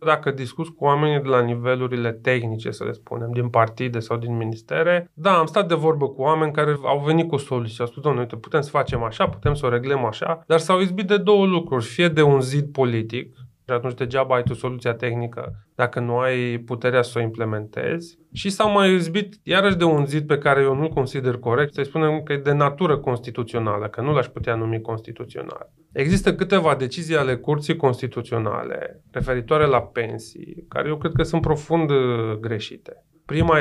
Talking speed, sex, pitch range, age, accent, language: 195 wpm, male, 120-160 Hz, 20-39, native, Romanian